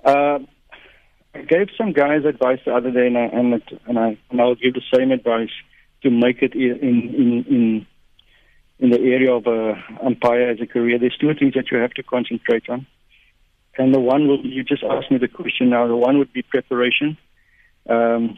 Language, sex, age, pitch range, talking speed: English, male, 60-79, 120-145 Hz, 195 wpm